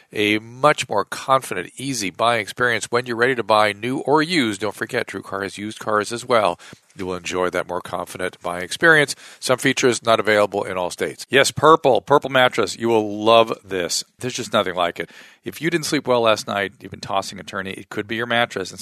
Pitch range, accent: 105-130 Hz, American